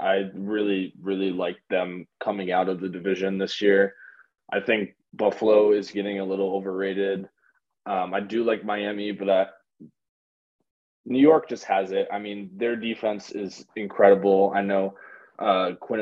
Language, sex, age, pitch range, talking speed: English, male, 20-39, 95-105 Hz, 155 wpm